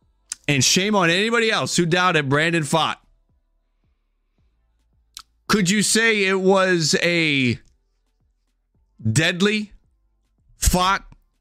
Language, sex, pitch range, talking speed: English, male, 135-195 Hz, 90 wpm